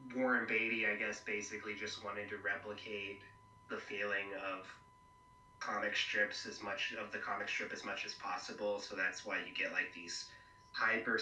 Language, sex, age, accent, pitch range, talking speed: English, male, 20-39, American, 100-125 Hz, 170 wpm